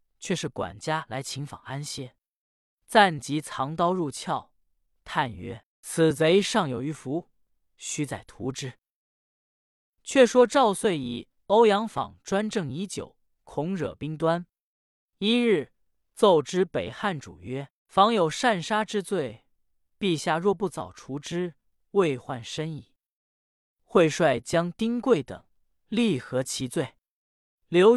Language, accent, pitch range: Chinese, native, 135-205 Hz